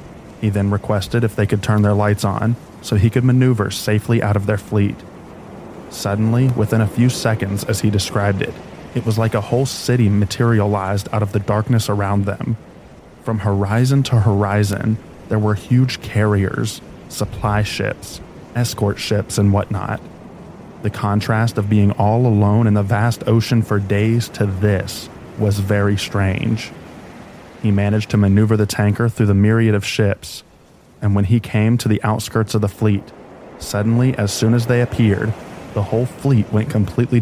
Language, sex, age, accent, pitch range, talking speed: English, male, 20-39, American, 100-115 Hz, 170 wpm